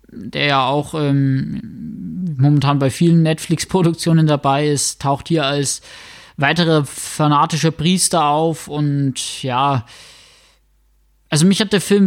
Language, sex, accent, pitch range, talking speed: German, male, German, 145-175 Hz, 120 wpm